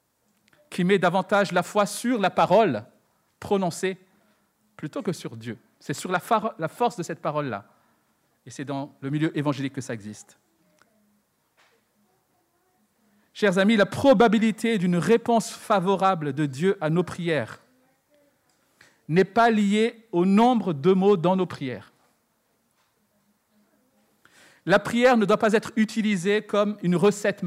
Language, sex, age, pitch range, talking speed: French, male, 50-69, 175-225 Hz, 135 wpm